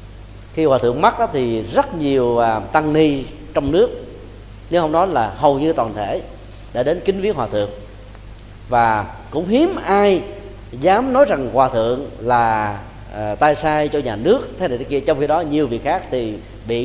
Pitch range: 105-160 Hz